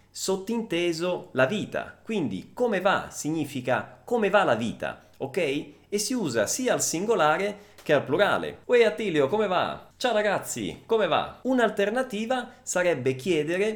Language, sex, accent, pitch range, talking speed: Italian, male, native, 145-215 Hz, 140 wpm